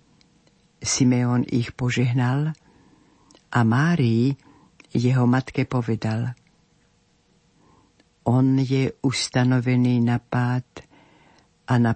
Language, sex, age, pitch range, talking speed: Slovak, female, 60-79, 125-145 Hz, 75 wpm